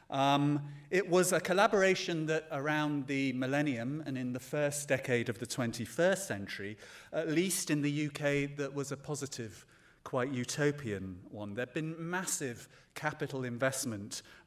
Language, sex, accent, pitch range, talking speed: English, male, British, 120-150 Hz, 150 wpm